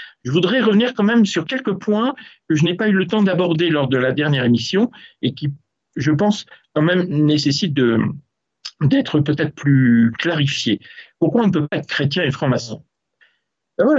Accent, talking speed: French, 185 wpm